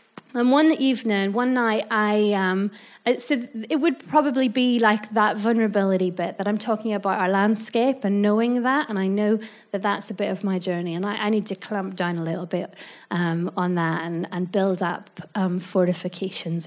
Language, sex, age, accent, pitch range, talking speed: English, female, 30-49, British, 185-235 Hz, 200 wpm